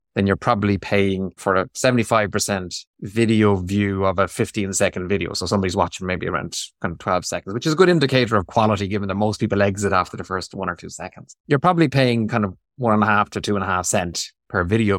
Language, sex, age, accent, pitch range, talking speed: English, male, 30-49, Irish, 100-125 Hz, 230 wpm